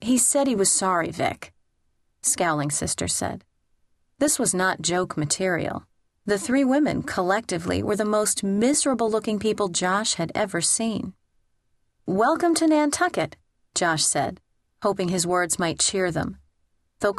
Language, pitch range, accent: English, 165-210 Hz, American